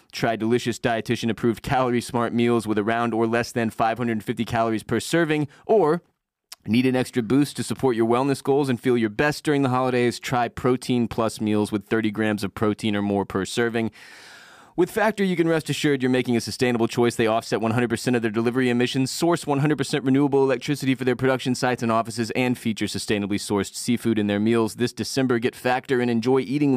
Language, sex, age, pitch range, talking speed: English, male, 20-39, 115-140 Hz, 195 wpm